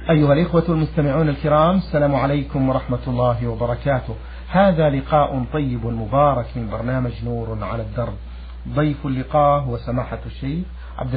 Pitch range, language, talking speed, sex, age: 120-150 Hz, Arabic, 130 wpm, male, 50-69